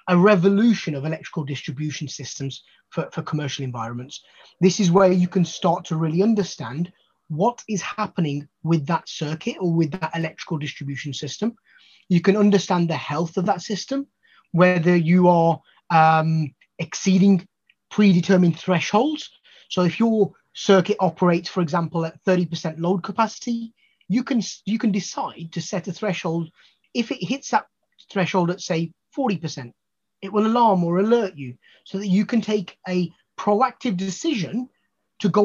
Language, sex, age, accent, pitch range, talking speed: English, male, 30-49, British, 165-215 Hz, 150 wpm